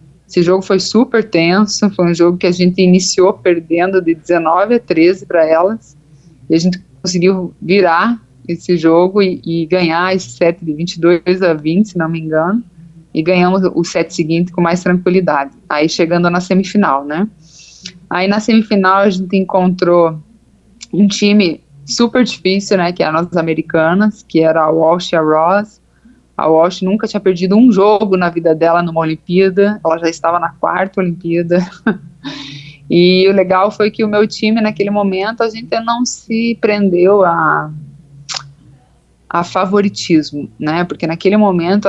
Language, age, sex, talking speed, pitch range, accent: Portuguese, 20-39, female, 165 wpm, 165-195 Hz, Brazilian